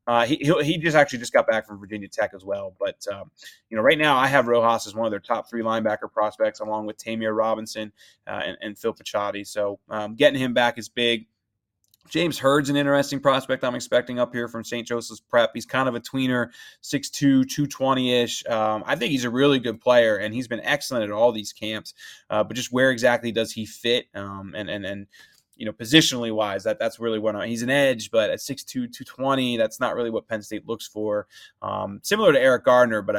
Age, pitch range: 20-39, 110-125 Hz